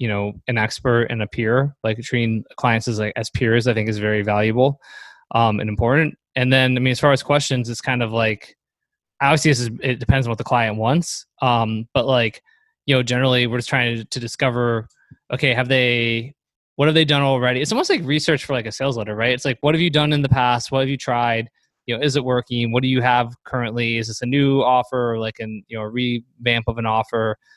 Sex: male